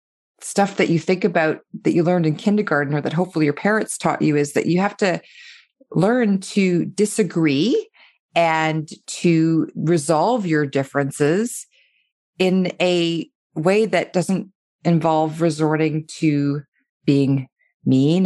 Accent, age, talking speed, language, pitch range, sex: American, 30-49, 130 wpm, English, 155-195 Hz, female